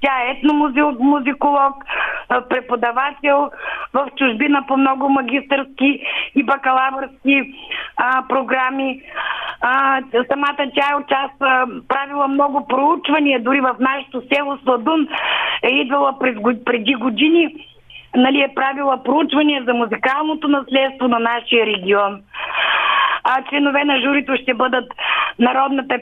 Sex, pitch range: female, 250-285 Hz